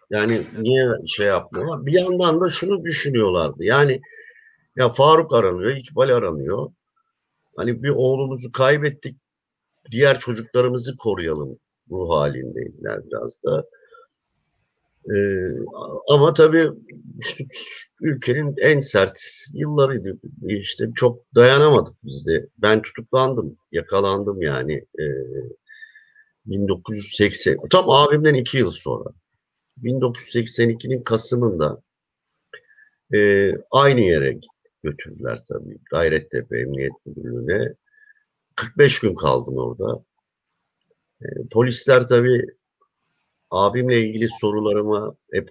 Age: 50-69